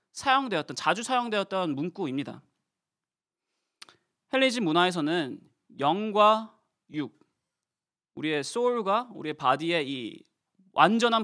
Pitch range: 155-240 Hz